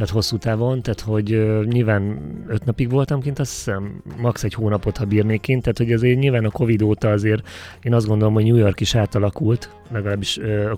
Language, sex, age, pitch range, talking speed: Hungarian, male, 30-49, 100-115 Hz, 205 wpm